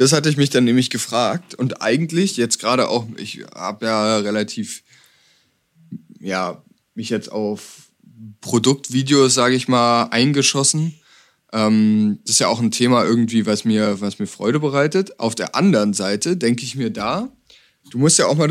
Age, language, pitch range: 20-39, English, 115-155 Hz